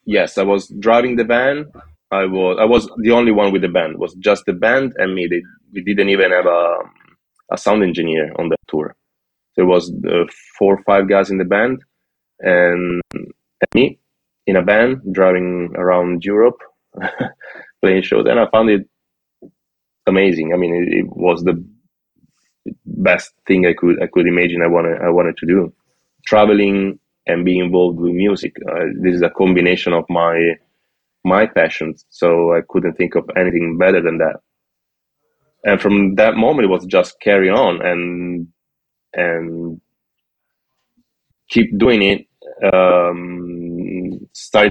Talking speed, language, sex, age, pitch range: 160 wpm, English, male, 20-39, 85-100 Hz